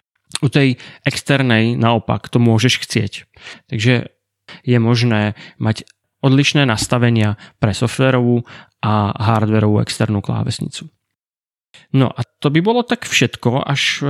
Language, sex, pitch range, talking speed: Czech, male, 120-150 Hz, 115 wpm